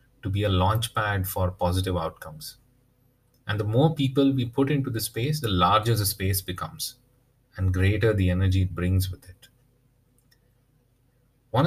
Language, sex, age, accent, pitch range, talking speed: English, male, 30-49, Indian, 95-125 Hz, 155 wpm